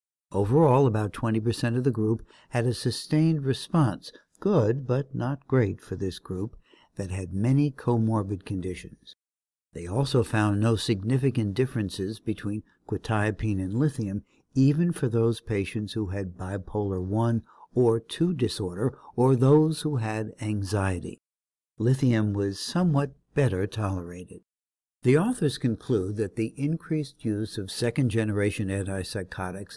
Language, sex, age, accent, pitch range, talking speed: English, male, 60-79, American, 100-130 Hz, 125 wpm